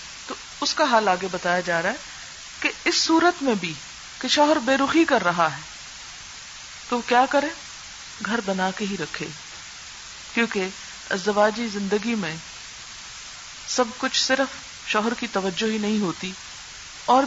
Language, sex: Urdu, female